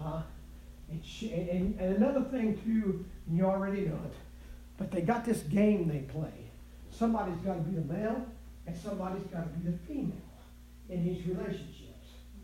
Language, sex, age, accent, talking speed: English, male, 50-69, American, 175 wpm